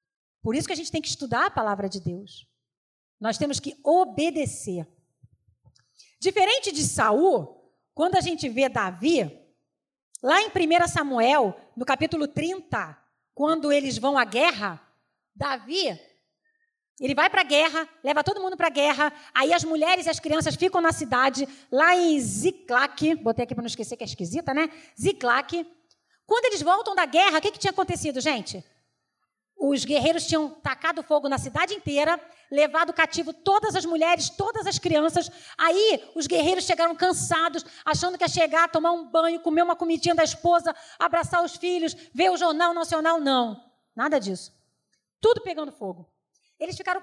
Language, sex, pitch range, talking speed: Portuguese, female, 275-345 Hz, 165 wpm